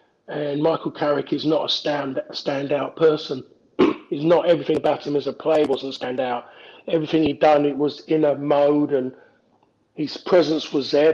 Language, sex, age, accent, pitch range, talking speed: English, male, 40-59, British, 135-155 Hz, 170 wpm